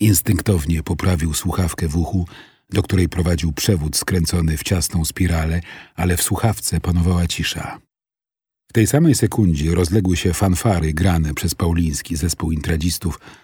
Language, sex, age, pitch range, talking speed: Polish, male, 40-59, 85-95 Hz, 135 wpm